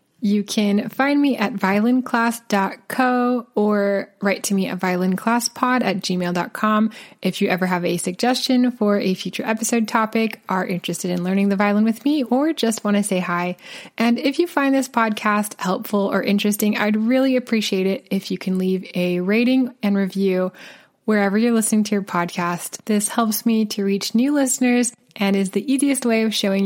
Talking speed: 180 wpm